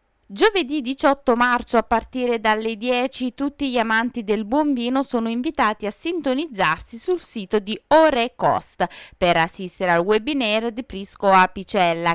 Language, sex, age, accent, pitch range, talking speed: Italian, female, 30-49, native, 180-260 Hz, 150 wpm